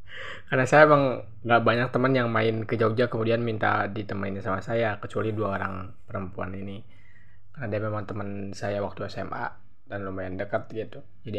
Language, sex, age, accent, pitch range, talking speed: Indonesian, male, 20-39, native, 100-120 Hz, 165 wpm